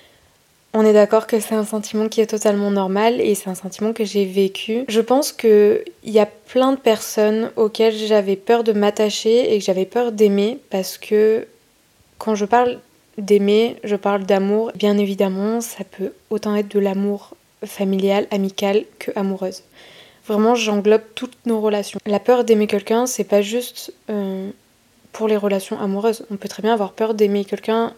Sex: female